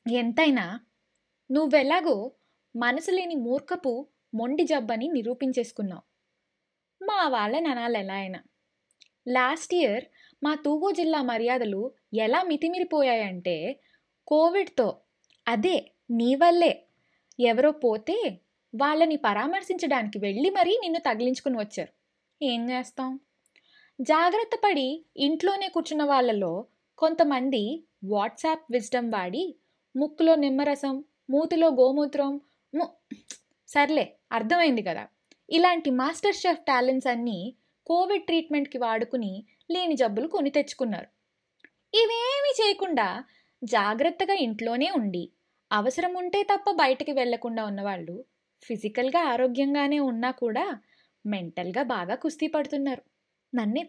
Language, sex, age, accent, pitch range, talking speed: Telugu, female, 20-39, native, 240-325 Hz, 90 wpm